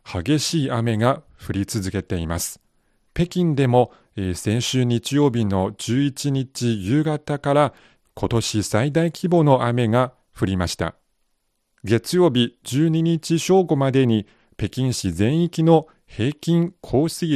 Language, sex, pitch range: Japanese, male, 105-150 Hz